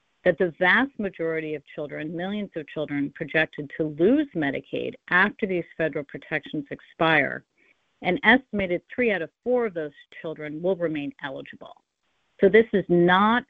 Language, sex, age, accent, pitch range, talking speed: English, female, 50-69, American, 150-185 Hz, 150 wpm